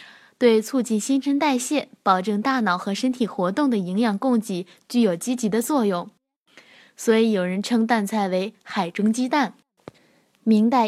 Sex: female